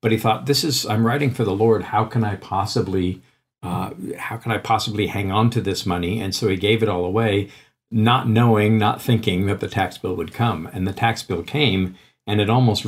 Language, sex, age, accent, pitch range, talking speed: English, male, 50-69, American, 95-115 Hz, 230 wpm